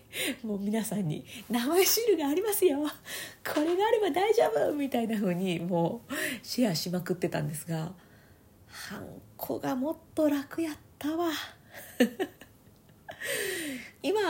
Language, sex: Japanese, female